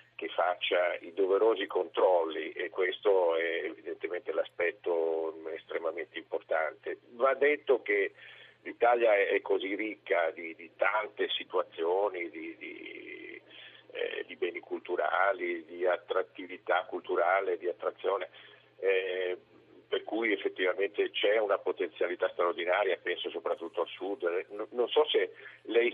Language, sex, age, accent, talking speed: Italian, male, 50-69, native, 110 wpm